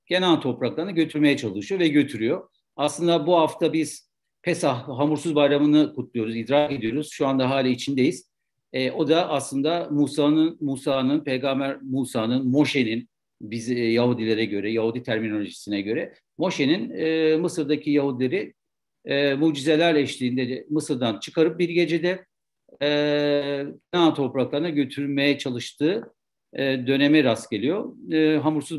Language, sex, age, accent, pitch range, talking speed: Turkish, male, 60-79, native, 130-160 Hz, 115 wpm